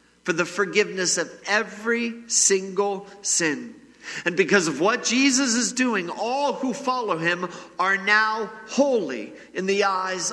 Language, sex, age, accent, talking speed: English, male, 50-69, American, 140 wpm